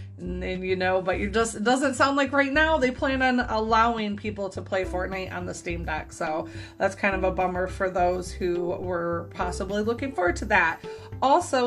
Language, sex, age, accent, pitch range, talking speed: English, female, 30-49, American, 180-235 Hz, 200 wpm